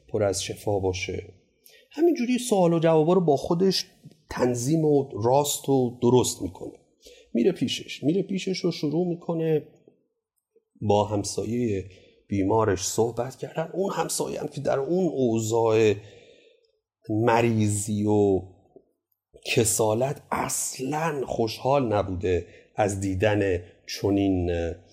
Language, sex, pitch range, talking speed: Persian, male, 105-155 Hz, 110 wpm